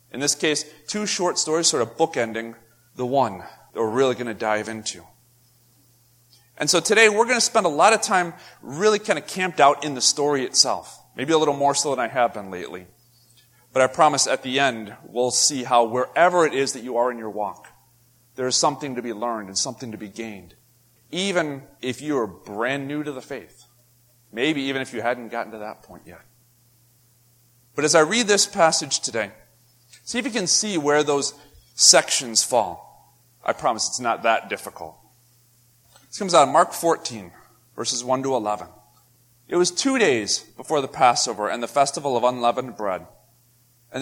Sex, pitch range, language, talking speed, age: male, 120-150 Hz, English, 195 wpm, 30-49